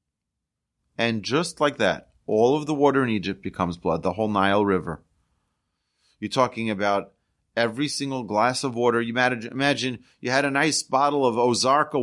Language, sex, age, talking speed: English, male, 30-49, 165 wpm